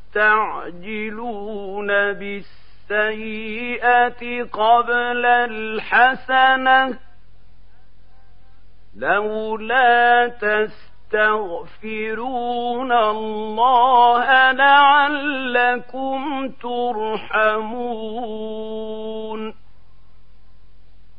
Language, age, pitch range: Arabic, 50-69, 220-260 Hz